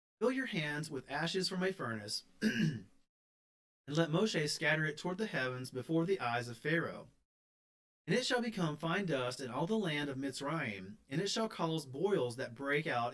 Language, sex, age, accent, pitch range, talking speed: English, male, 30-49, American, 130-185 Hz, 185 wpm